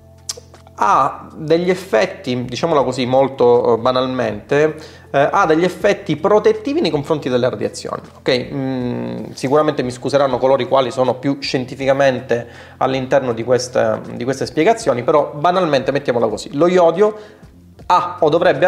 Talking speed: 135 wpm